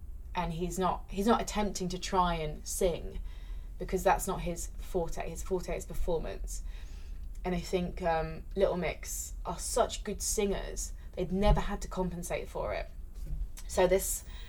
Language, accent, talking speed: English, British, 155 wpm